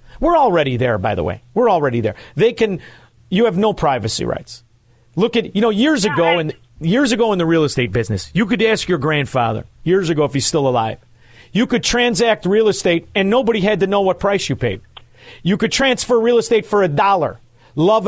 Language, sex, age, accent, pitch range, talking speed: English, male, 40-59, American, 125-210 Hz, 210 wpm